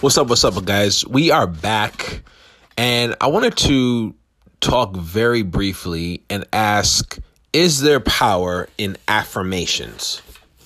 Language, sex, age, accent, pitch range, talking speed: English, male, 30-49, American, 100-120 Hz, 125 wpm